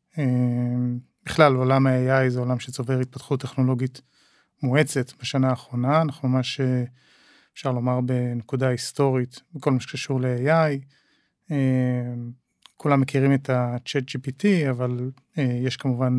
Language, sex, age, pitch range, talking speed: Hebrew, male, 30-49, 125-145 Hz, 110 wpm